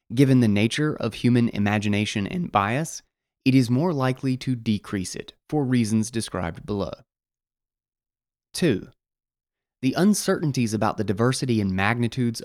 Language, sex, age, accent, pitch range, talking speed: English, male, 20-39, American, 110-140 Hz, 130 wpm